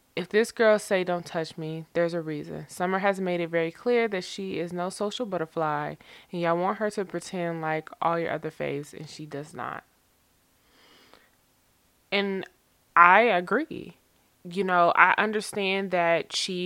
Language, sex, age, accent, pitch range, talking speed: English, female, 20-39, American, 155-190 Hz, 165 wpm